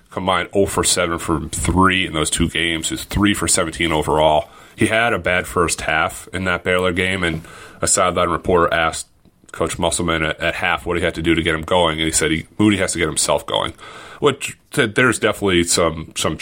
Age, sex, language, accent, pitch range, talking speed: 30-49, male, English, American, 85-100 Hz, 215 wpm